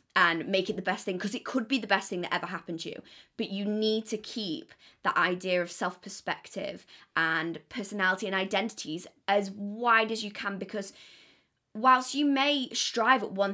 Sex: female